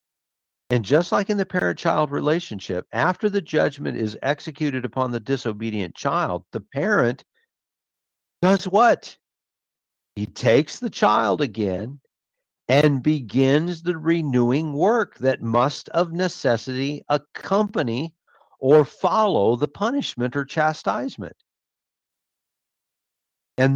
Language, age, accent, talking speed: English, 50-69, American, 105 wpm